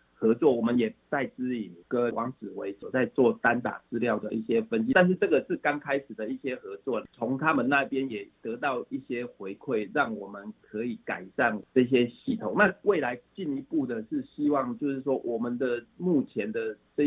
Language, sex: Chinese, male